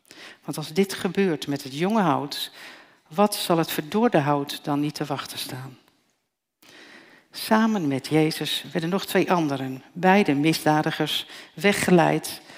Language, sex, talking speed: Dutch, female, 135 wpm